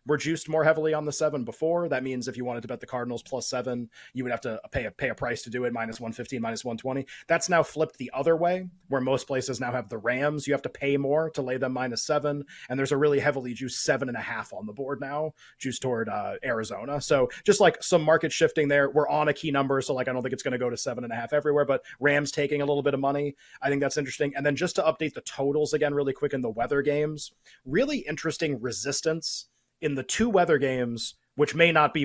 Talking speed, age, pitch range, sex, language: 265 wpm, 30-49, 130-155 Hz, male, English